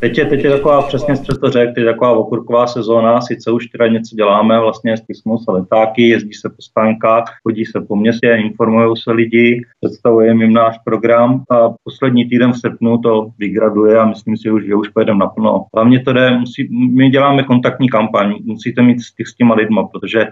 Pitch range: 105-115 Hz